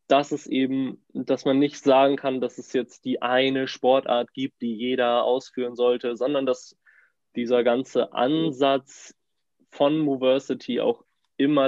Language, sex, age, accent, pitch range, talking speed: German, male, 20-39, German, 120-140 Hz, 145 wpm